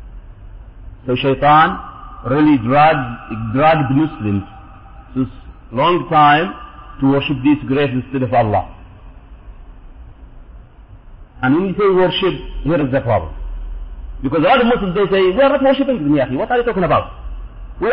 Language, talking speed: English, 145 wpm